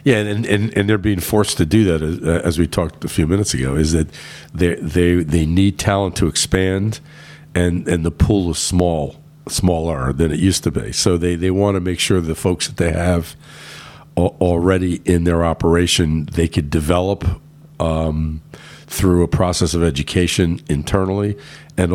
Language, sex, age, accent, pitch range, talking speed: English, male, 50-69, American, 80-95 Hz, 180 wpm